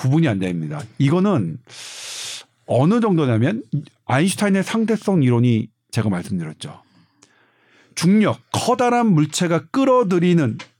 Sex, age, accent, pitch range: male, 50-69, native, 130-200 Hz